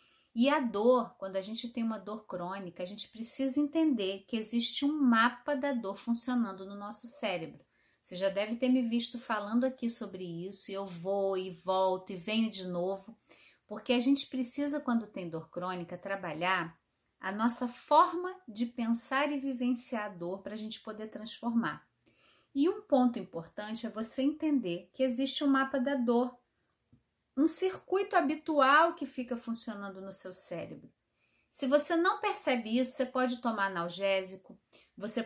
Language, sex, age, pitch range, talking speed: Portuguese, female, 30-49, 200-265 Hz, 165 wpm